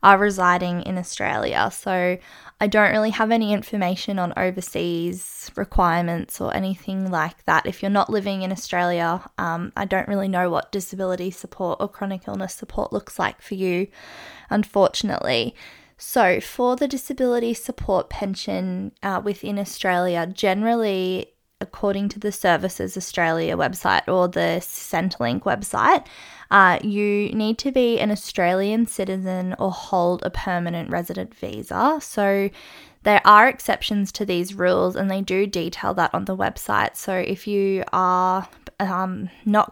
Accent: Australian